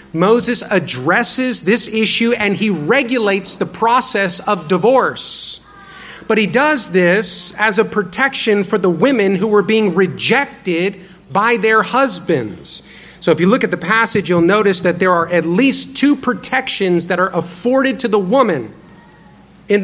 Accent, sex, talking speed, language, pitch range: American, male, 155 wpm, English, 175-220 Hz